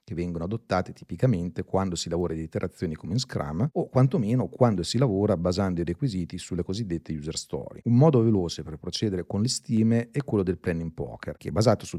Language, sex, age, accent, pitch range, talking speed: Italian, male, 40-59, native, 85-115 Hz, 205 wpm